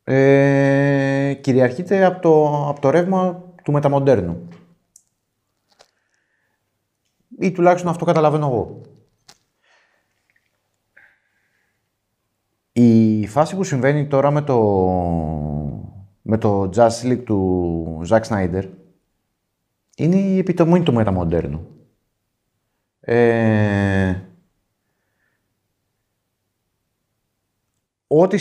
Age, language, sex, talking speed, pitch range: 30-49, Greek, male, 75 wpm, 100-135 Hz